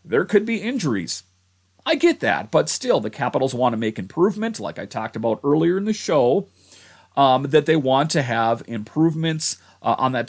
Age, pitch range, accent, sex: 40-59, 110-160 Hz, American, male